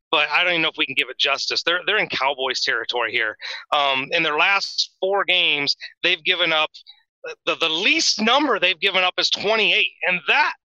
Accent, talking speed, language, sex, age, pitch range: American, 210 wpm, English, male, 30-49, 150-185 Hz